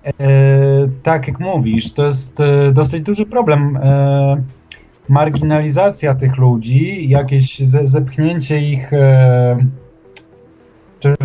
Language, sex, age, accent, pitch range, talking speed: Polish, male, 20-39, native, 125-145 Hz, 80 wpm